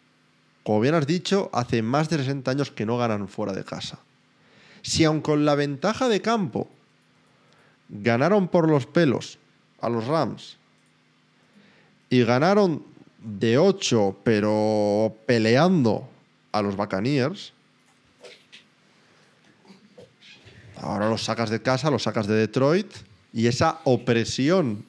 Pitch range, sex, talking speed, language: 110-150 Hz, male, 120 wpm, Spanish